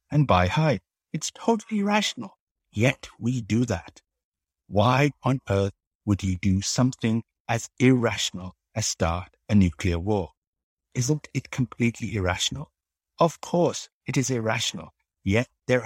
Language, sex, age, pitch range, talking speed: English, male, 60-79, 90-130 Hz, 130 wpm